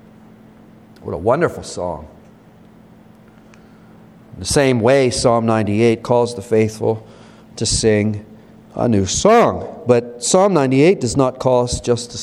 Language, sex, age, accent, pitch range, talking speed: English, male, 40-59, American, 120-155 Hz, 130 wpm